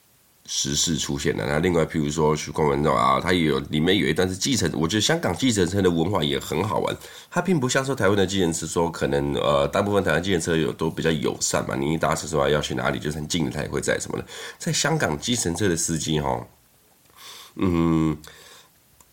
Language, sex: Chinese, male